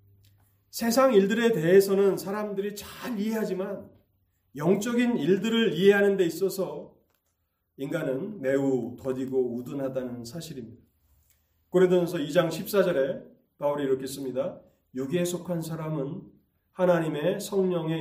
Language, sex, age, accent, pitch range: Korean, male, 30-49, native, 120-190 Hz